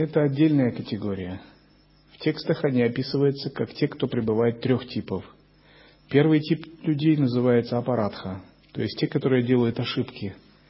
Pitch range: 110-130 Hz